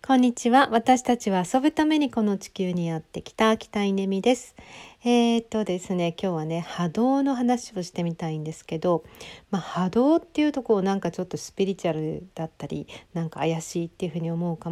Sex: female